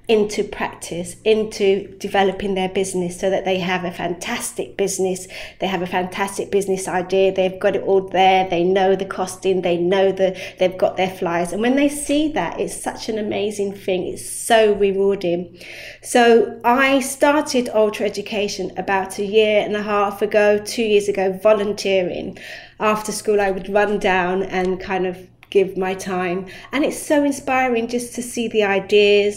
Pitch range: 185-215 Hz